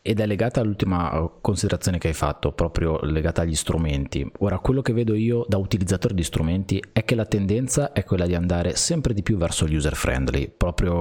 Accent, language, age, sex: native, Italian, 30-49, male